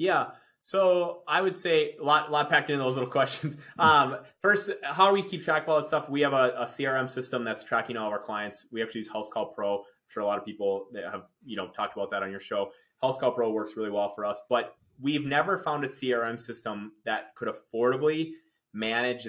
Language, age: English, 20-39